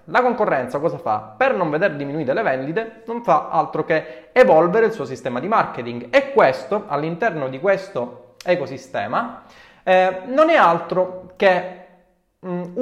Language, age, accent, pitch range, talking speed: Italian, 20-39, native, 135-215 Hz, 150 wpm